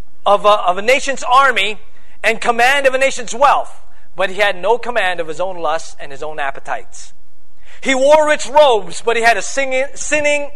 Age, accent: 40-59, American